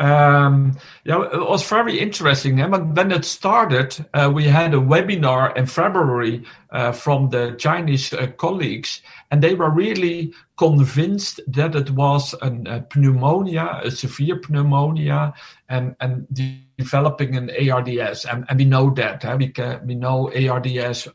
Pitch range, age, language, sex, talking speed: 130-155 Hz, 50-69, English, male, 150 wpm